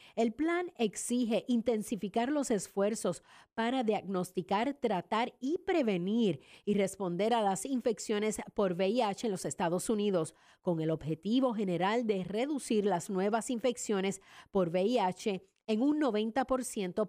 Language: English